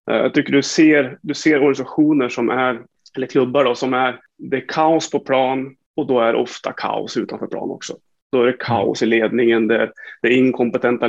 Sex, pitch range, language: male, 120-150 Hz, Swedish